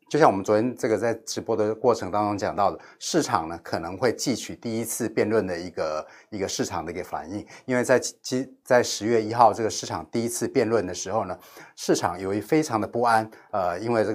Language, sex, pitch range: Chinese, male, 100-120 Hz